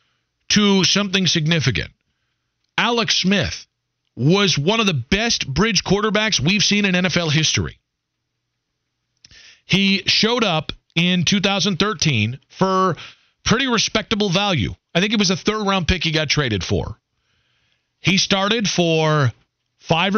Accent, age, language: American, 40-59, English